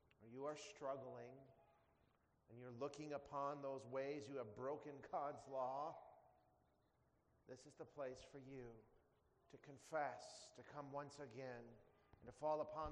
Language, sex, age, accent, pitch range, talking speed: English, male, 40-59, American, 125-150 Hz, 140 wpm